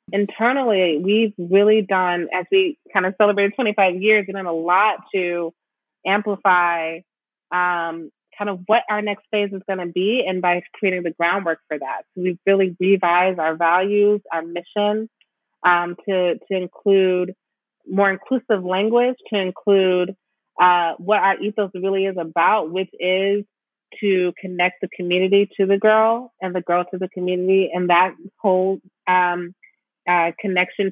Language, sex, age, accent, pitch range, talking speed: English, female, 30-49, American, 165-195 Hz, 155 wpm